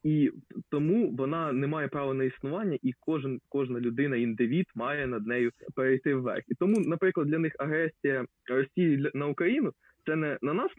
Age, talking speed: 20-39, 185 wpm